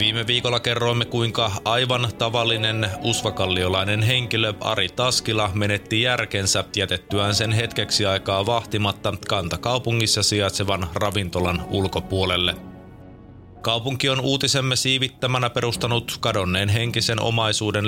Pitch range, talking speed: 100-120 Hz, 95 wpm